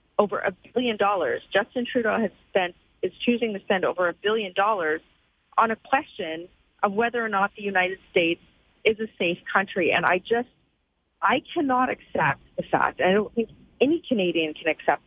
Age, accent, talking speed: 40-59, American, 180 wpm